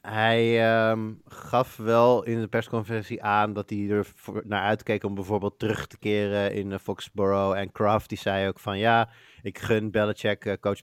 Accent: Dutch